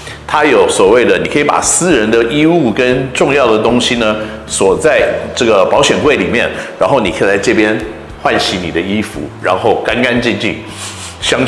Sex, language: male, Chinese